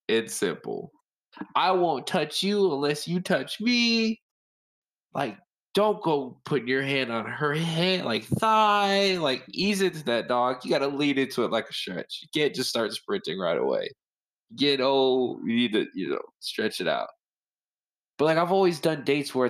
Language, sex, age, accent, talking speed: English, male, 20-39, American, 180 wpm